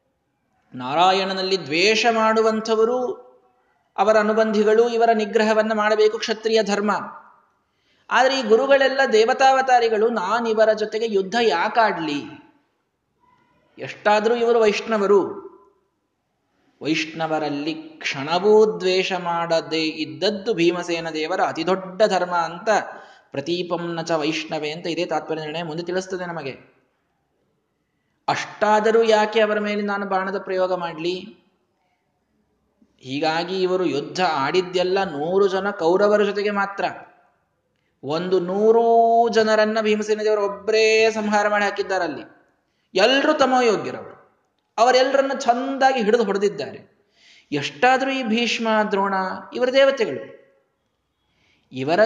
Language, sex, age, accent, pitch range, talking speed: Kannada, male, 20-39, native, 175-225 Hz, 90 wpm